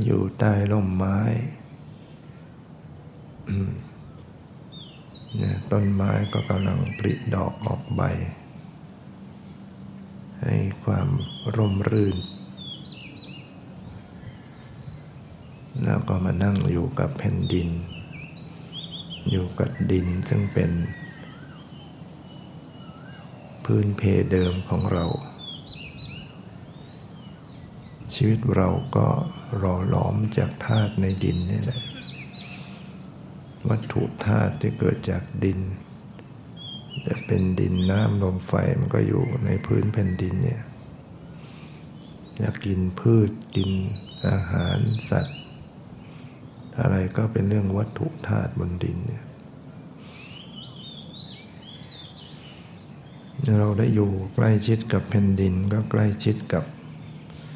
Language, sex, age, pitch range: English, male, 60-79, 95-115 Hz